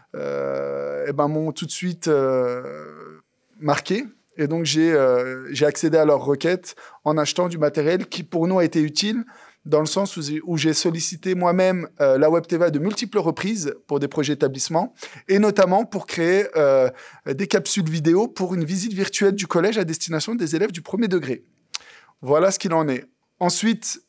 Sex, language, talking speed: male, French, 180 wpm